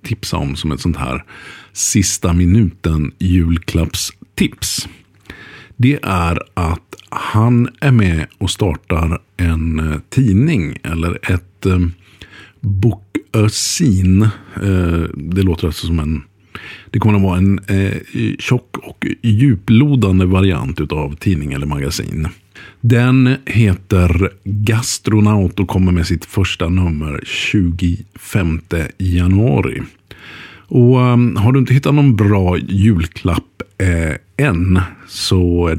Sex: male